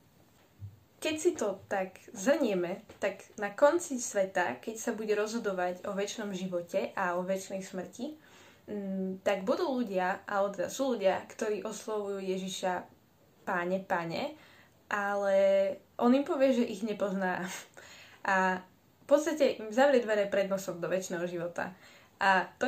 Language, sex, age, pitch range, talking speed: Slovak, female, 20-39, 190-235 Hz, 140 wpm